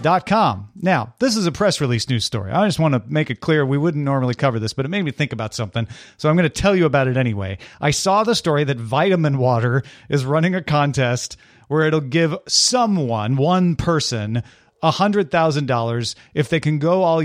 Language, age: English, 40-59